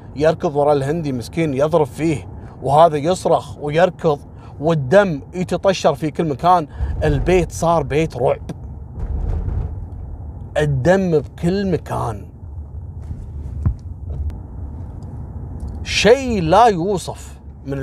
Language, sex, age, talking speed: Arabic, male, 30-49, 85 wpm